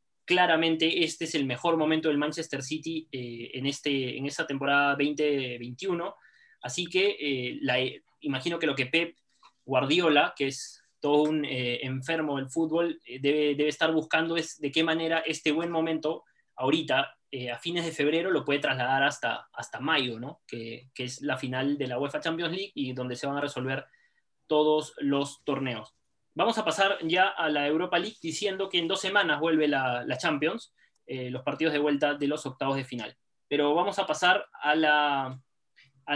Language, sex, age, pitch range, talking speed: Spanish, male, 20-39, 135-170 Hz, 185 wpm